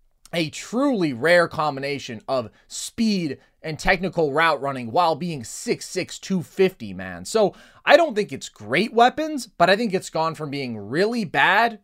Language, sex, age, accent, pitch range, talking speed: English, male, 20-39, American, 140-205 Hz, 155 wpm